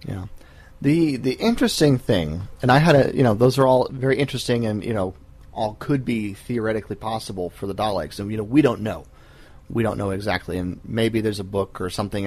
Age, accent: 30-49, American